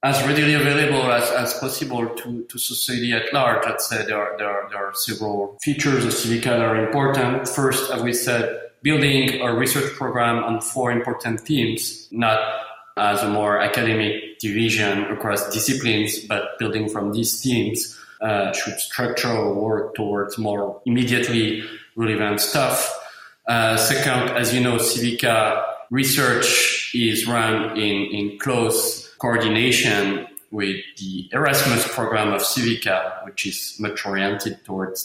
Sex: male